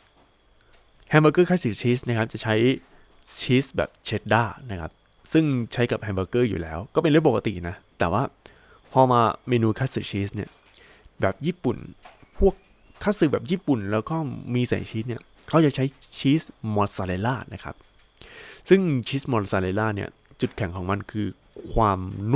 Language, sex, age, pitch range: Thai, male, 20-39, 100-140 Hz